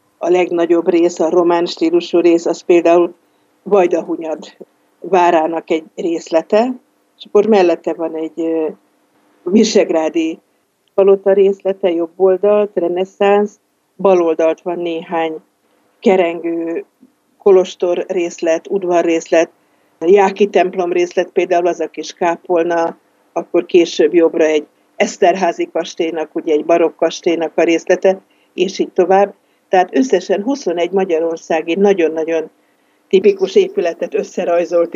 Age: 50-69